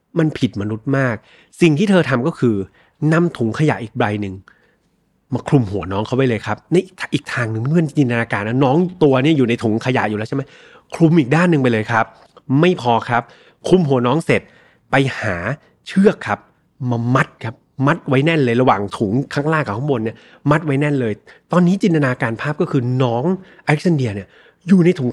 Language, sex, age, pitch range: Thai, male, 20-39, 115-165 Hz